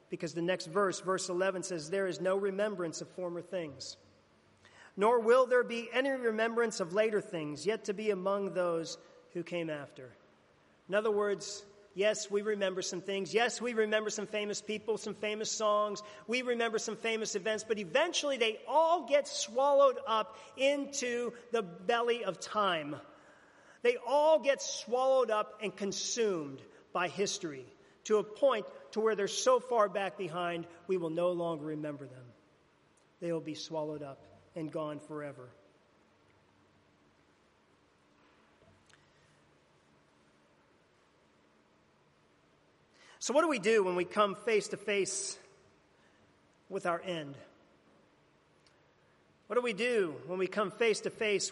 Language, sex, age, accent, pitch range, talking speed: English, male, 40-59, American, 170-220 Hz, 140 wpm